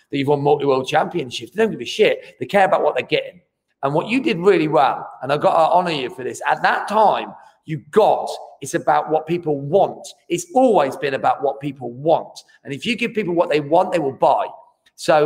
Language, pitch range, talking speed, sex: English, 155-220 Hz, 230 wpm, male